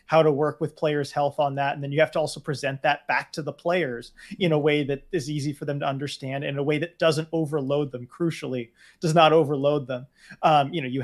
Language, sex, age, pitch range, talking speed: English, male, 30-49, 140-165 Hz, 255 wpm